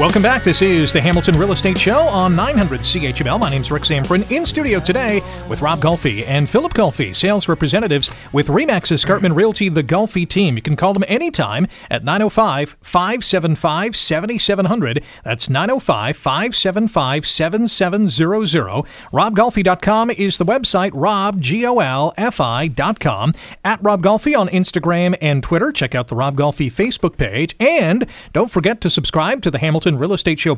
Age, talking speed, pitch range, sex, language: 40-59, 155 wpm, 145-210 Hz, male, English